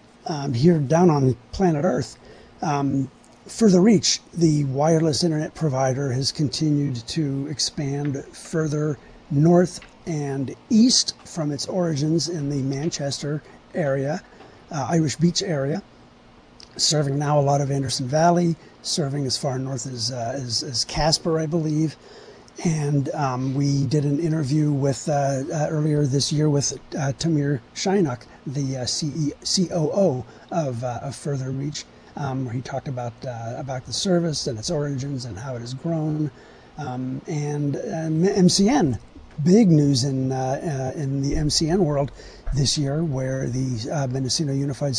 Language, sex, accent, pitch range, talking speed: English, male, American, 135-160 Hz, 150 wpm